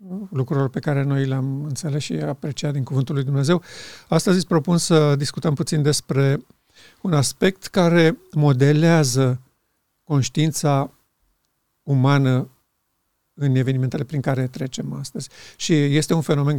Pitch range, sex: 135-165 Hz, male